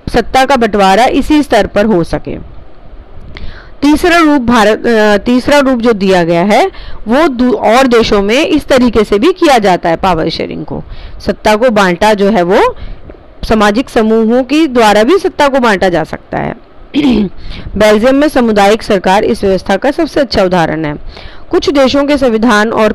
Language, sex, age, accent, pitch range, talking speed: Hindi, female, 30-49, native, 200-275 Hz, 175 wpm